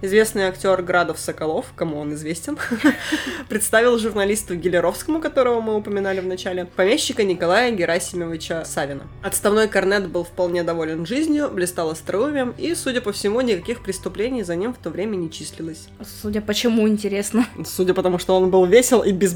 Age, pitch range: 20-39, 175-220 Hz